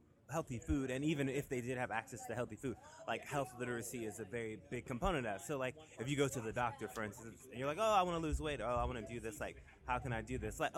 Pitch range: 105-125 Hz